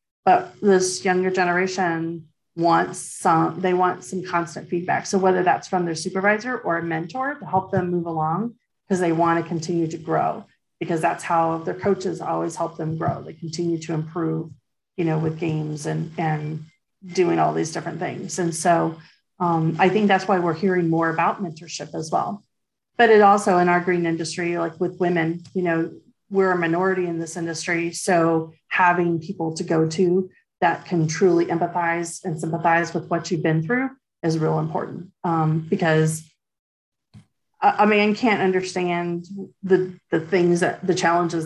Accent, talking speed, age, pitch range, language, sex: American, 175 wpm, 40-59, 165-185 Hz, English, female